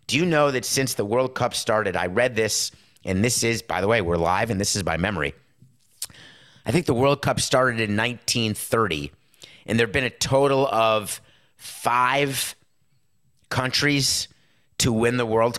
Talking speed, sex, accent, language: 170 wpm, male, American, English